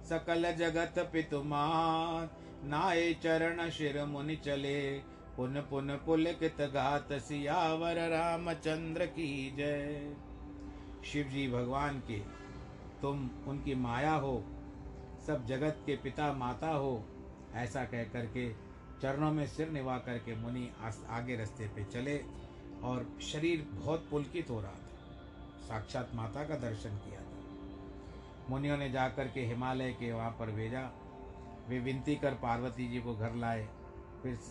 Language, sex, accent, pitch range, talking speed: Hindi, male, native, 110-145 Hz, 125 wpm